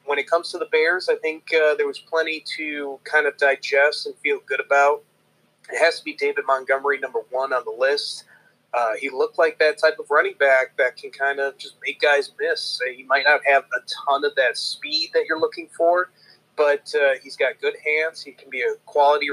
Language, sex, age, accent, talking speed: English, male, 30-49, American, 225 wpm